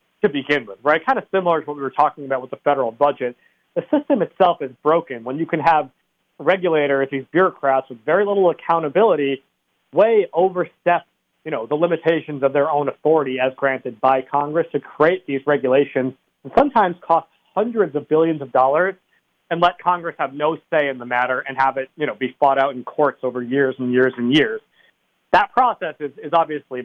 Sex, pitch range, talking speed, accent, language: male, 135-165 Hz, 200 wpm, American, English